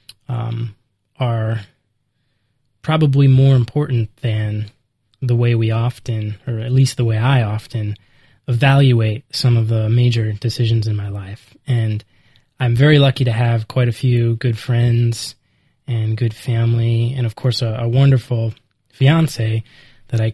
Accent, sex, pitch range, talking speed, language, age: American, male, 115-140 Hz, 145 wpm, English, 20-39